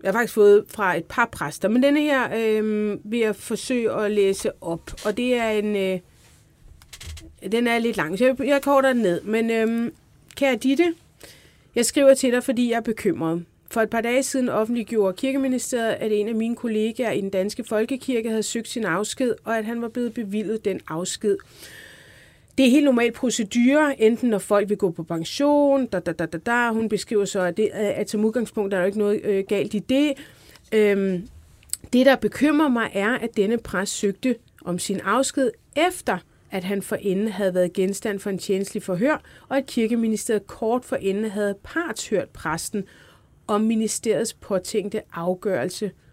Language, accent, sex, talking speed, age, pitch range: Danish, native, female, 180 wpm, 30-49, 195-240 Hz